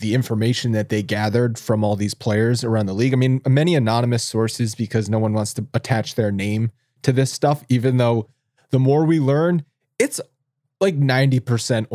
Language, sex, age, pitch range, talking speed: English, male, 20-39, 120-150 Hz, 185 wpm